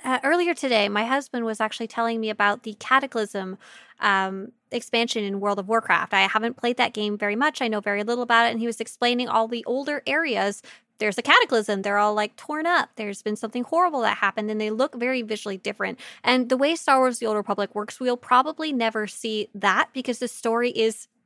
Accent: American